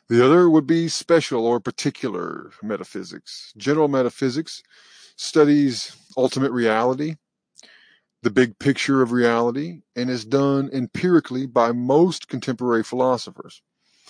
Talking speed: 110 wpm